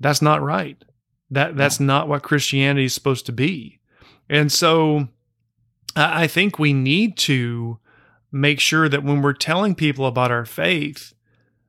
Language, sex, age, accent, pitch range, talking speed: English, male, 40-59, American, 130-165 Hz, 150 wpm